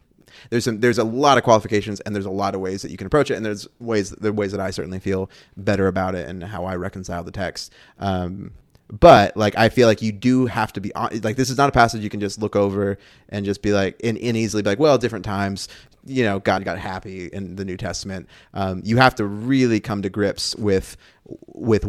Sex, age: male, 20-39